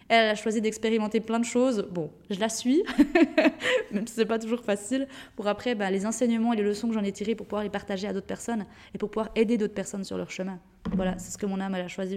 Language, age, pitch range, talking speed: French, 20-39, 190-230 Hz, 270 wpm